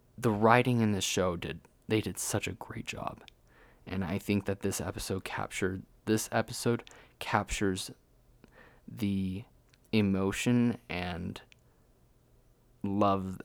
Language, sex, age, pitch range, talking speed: English, male, 20-39, 95-120 Hz, 115 wpm